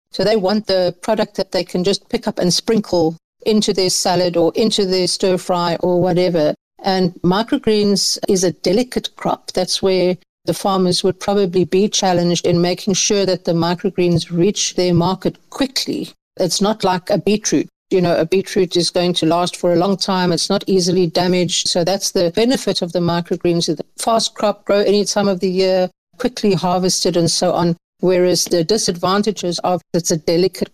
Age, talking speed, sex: 60-79, 185 wpm, female